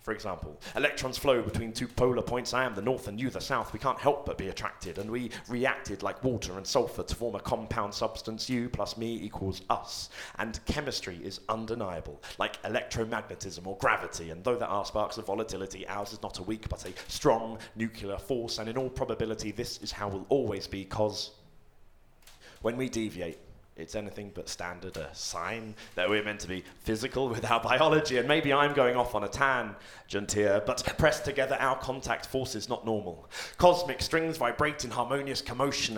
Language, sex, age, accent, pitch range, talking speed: English, male, 30-49, British, 100-130 Hz, 195 wpm